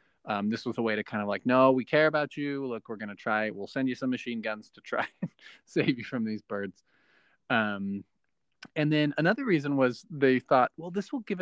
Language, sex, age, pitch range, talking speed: English, male, 20-39, 105-135 Hz, 235 wpm